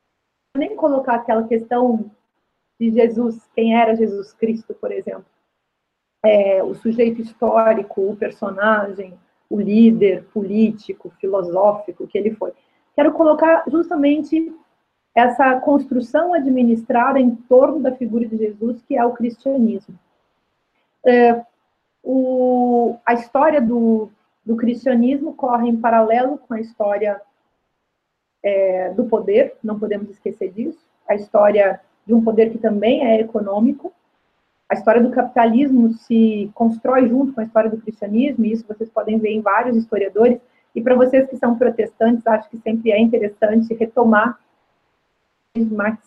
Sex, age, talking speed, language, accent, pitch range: female, 40-59, 130 wpm, Portuguese, Brazilian, 215-255 Hz